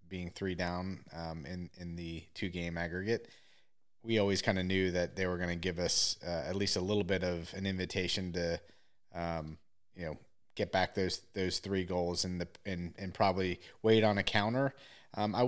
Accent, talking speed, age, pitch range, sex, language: American, 200 wpm, 30-49, 90-105 Hz, male, English